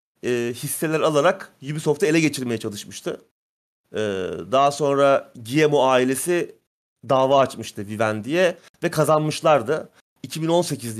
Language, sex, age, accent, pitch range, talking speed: Turkish, male, 30-49, native, 120-155 Hz, 100 wpm